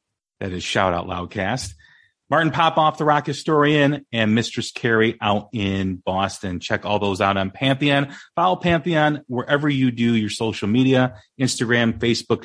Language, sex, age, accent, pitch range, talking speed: English, male, 30-49, American, 105-150 Hz, 155 wpm